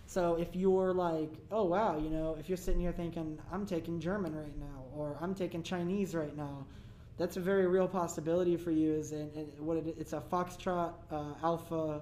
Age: 20-39